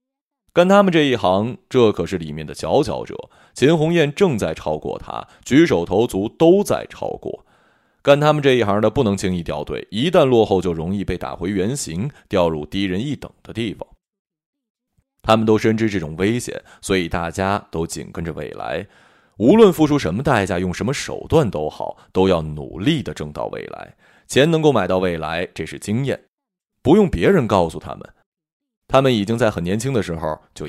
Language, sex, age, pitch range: Chinese, male, 20-39, 95-155 Hz